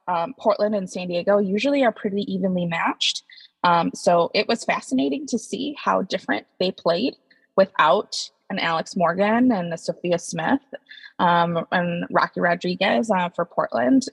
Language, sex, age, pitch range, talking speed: English, female, 20-39, 175-225 Hz, 155 wpm